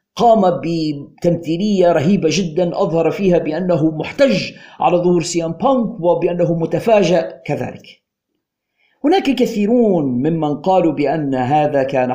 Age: 50-69